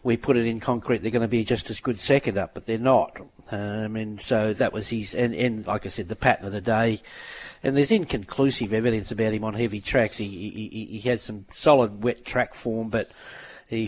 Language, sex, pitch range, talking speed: English, male, 110-125 Hz, 230 wpm